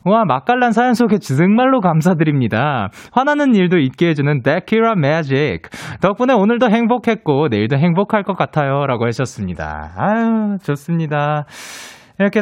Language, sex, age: Korean, male, 20-39